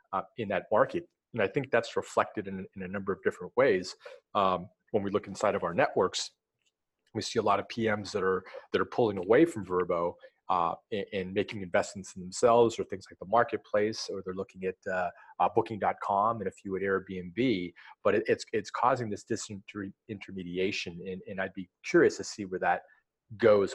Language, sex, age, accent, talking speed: English, male, 40-59, American, 205 wpm